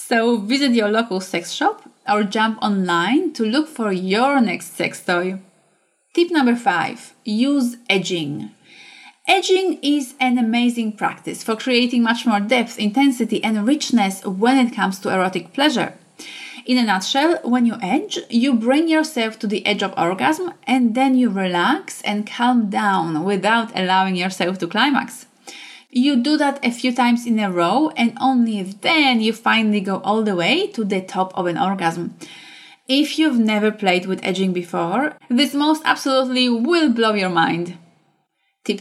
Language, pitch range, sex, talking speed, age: English, 195-270 Hz, female, 160 wpm, 30-49